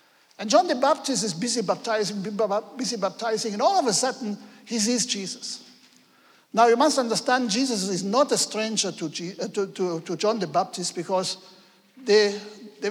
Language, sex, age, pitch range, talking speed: English, male, 60-79, 195-250 Hz, 165 wpm